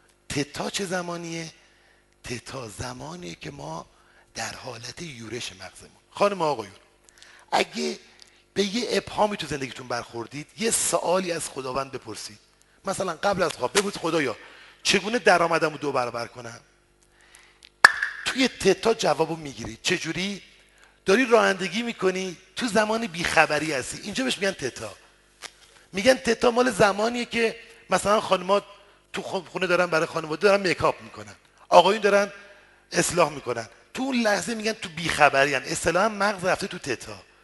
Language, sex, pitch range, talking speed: Persian, male, 150-215 Hz, 140 wpm